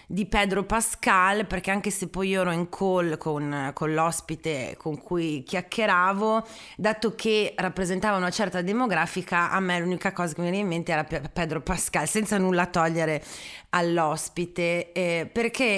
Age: 30-49